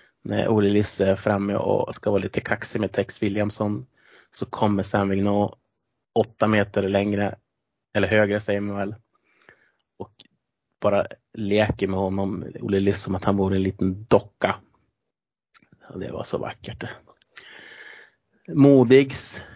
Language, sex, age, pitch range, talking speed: Swedish, male, 30-49, 100-120 Hz, 140 wpm